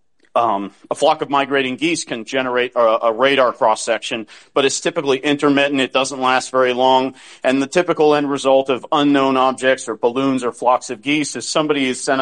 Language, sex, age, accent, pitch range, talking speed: English, male, 40-59, American, 125-150 Hz, 195 wpm